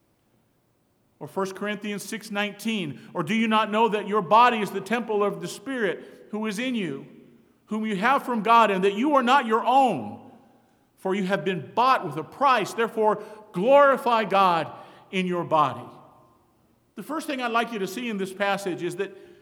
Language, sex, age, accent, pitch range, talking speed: English, male, 50-69, American, 175-235 Hz, 190 wpm